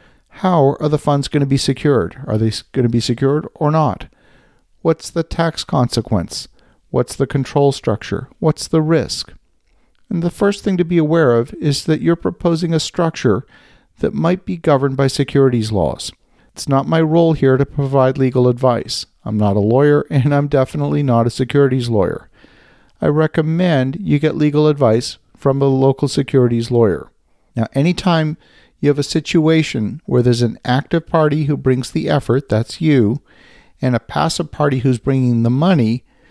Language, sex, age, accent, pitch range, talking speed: English, male, 50-69, American, 120-150 Hz, 170 wpm